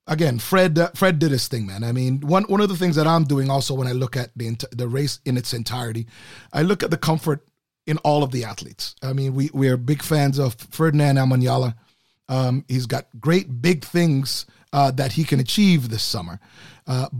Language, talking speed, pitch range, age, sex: English, 225 wpm, 130-160 Hz, 30-49, male